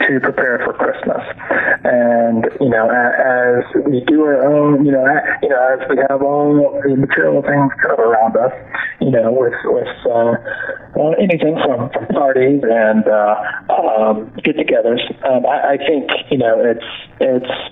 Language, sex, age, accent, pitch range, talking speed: English, male, 30-49, American, 120-155 Hz, 160 wpm